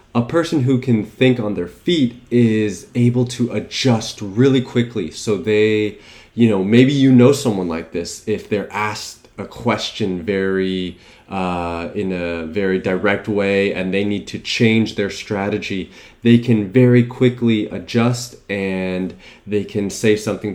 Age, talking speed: 20-39, 155 wpm